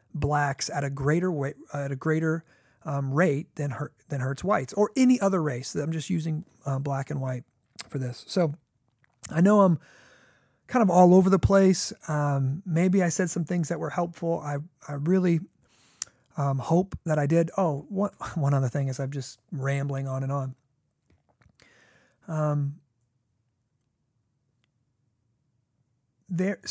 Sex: male